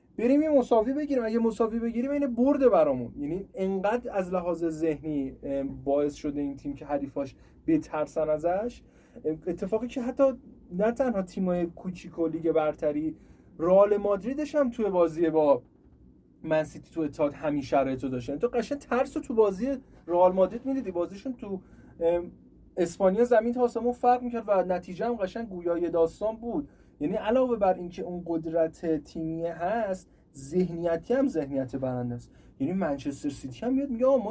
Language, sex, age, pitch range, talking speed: Persian, male, 30-49, 155-235 Hz, 150 wpm